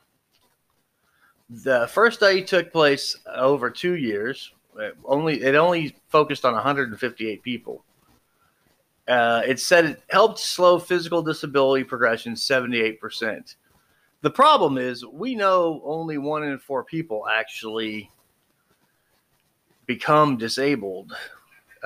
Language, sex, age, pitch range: English, male, 30-49, 115-165 Hz